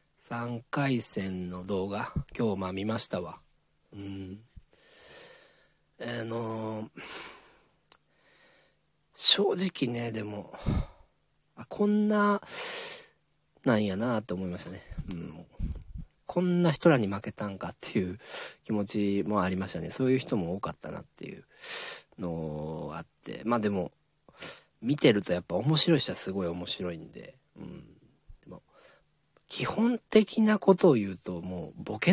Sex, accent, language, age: male, native, Japanese, 40-59